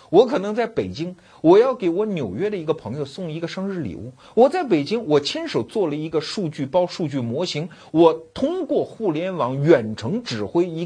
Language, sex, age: Chinese, male, 50-69